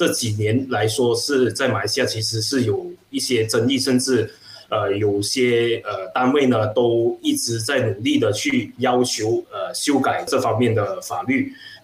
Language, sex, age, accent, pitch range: Chinese, male, 20-39, native, 115-185 Hz